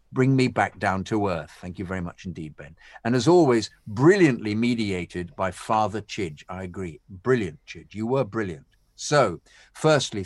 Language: English